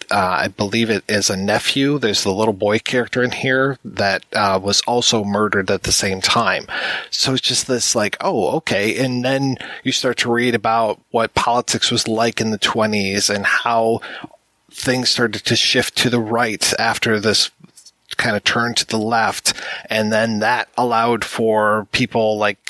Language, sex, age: English, male, 30-49